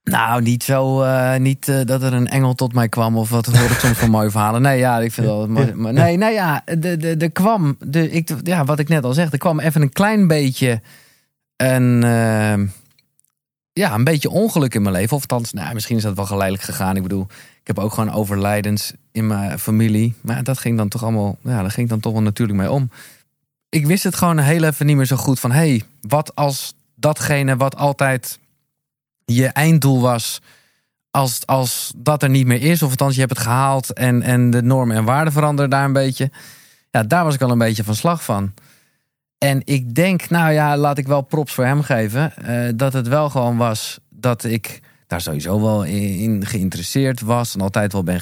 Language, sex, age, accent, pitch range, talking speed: Dutch, male, 20-39, Dutch, 110-140 Hz, 220 wpm